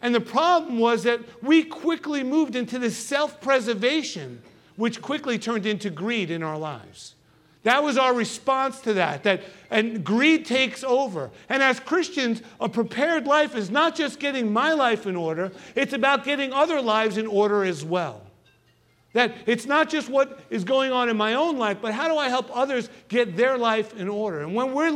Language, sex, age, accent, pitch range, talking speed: English, male, 50-69, American, 180-255 Hz, 190 wpm